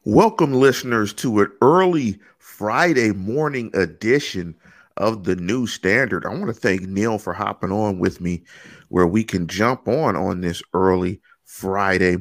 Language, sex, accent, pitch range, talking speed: English, male, American, 100-140 Hz, 150 wpm